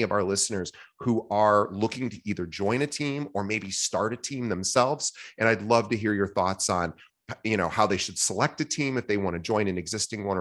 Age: 30-49